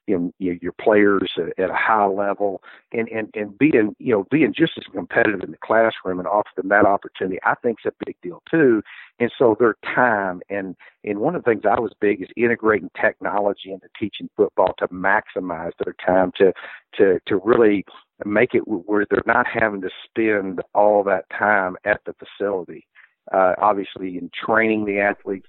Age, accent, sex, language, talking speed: 50-69, American, male, English, 185 wpm